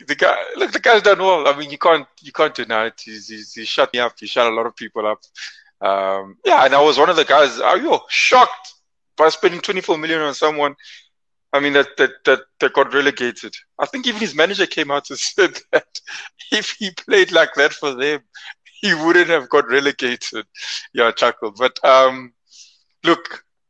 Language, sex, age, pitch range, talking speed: English, male, 20-39, 115-160 Hz, 210 wpm